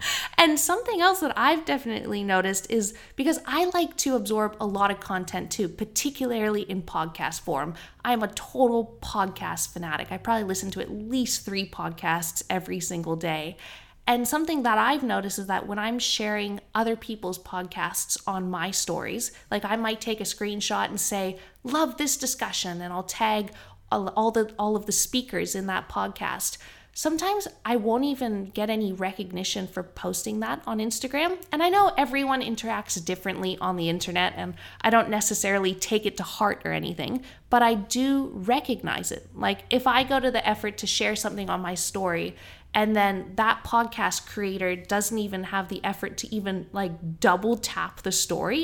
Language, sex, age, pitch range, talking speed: English, female, 20-39, 185-240 Hz, 180 wpm